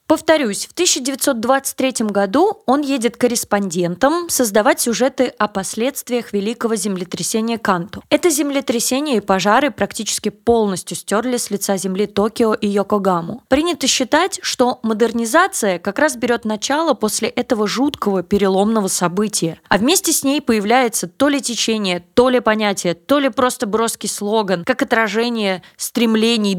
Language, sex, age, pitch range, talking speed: Russian, female, 20-39, 200-260 Hz, 135 wpm